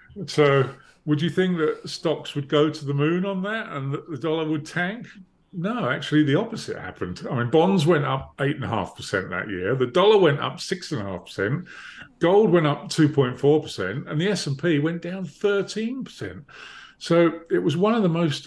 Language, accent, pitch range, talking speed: English, British, 130-175 Hz, 175 wpm